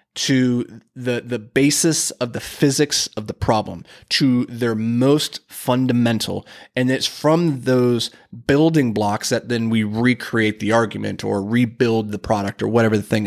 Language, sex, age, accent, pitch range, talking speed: English, male, 30-49, American, 115-135 Hz, 155 wpm